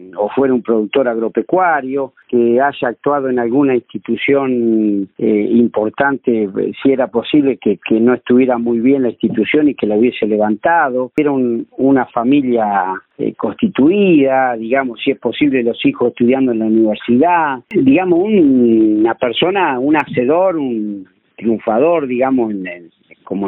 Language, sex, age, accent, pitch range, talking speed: Spanish, male, 50-69, Argentinian, 115-145 Hz, 145 wpm